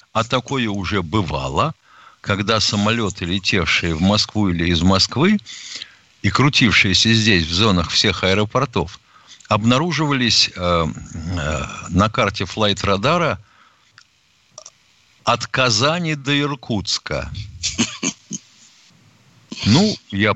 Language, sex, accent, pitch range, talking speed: Russian, male, native, 95-125 Hz, 90 wpm